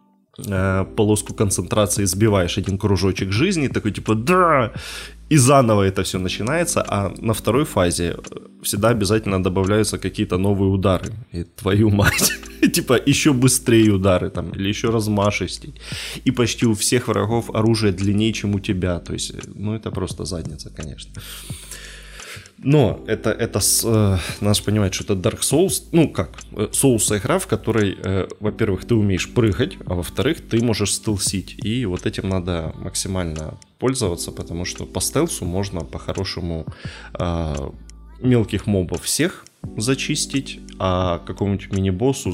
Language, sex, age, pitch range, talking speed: Ukrainian, male, 20-39, 95-110 Hz, 135 wpm